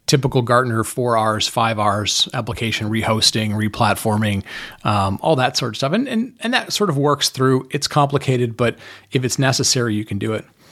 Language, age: English, 40-59